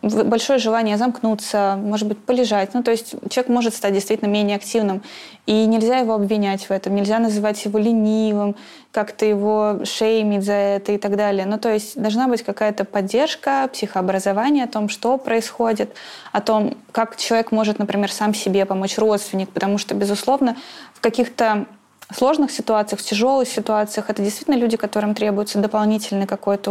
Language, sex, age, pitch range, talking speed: Russian, female, 20-39, 205-230 Hz, 160 wpm